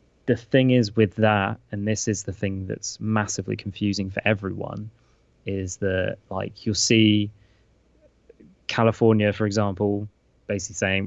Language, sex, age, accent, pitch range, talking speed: English, male, 20-39, British, 95-110 Hz, 135 wpm